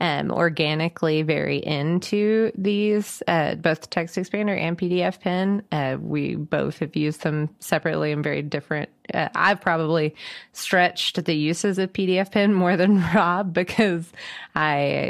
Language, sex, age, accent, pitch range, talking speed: English, female, 20-39, American, 150-190 Hz, 150 wpm